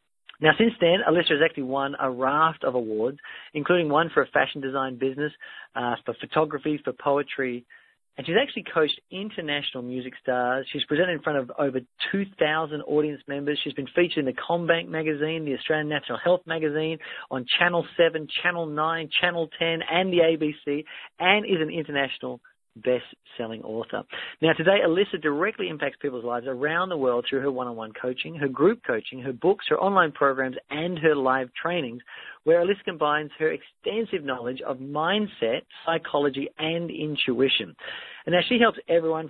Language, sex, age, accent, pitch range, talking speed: English, male, 40-59, Australian, 135-170 Hz, 165 wpm